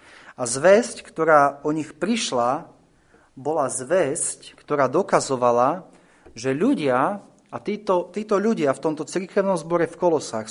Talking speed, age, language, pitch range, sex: 125 wpm, 40-59, Slovak, 125-175 Hz, male